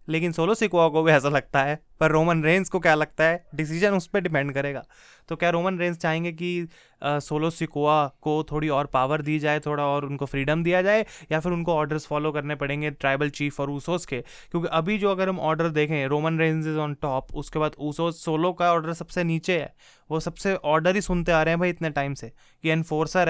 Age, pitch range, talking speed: 20-39, 150-170 Hz, 225 wpm